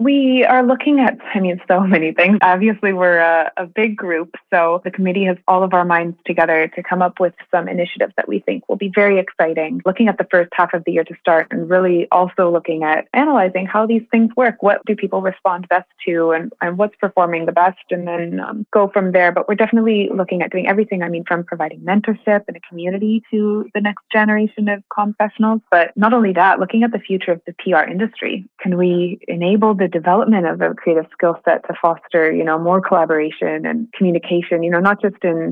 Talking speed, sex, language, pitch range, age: 220 wpm, female, English, 170-200 Hz, 20-39